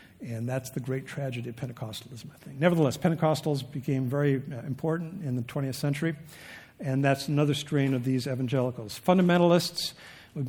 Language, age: English, 60-79